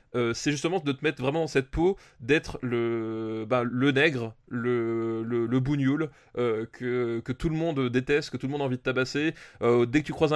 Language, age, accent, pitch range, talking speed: French, 20-39, French, 120-145 Hz, 225 wpm